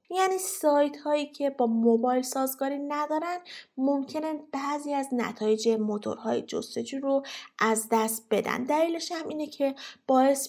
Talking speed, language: 130 wpm, Persian